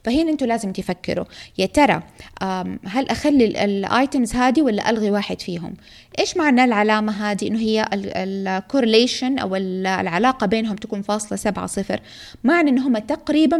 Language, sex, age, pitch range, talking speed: Arabic, female, 20-39, 200-265 Hz, 135 wpm